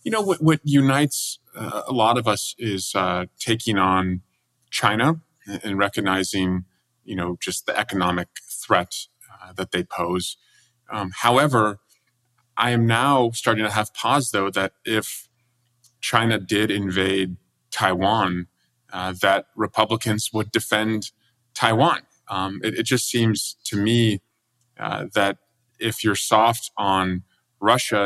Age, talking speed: 30-49, 135 wpm